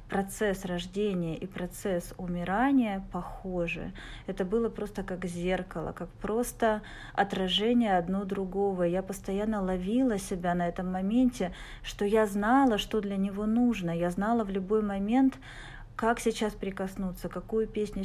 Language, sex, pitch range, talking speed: Russian, female, 180-215 Hz, 135 wpm